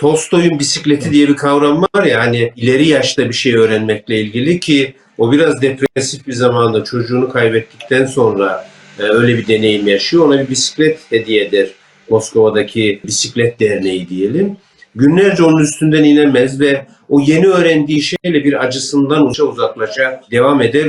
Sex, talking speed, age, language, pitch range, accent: male, 140 wpm, 50-69, Turkish, 120-155 Hz, native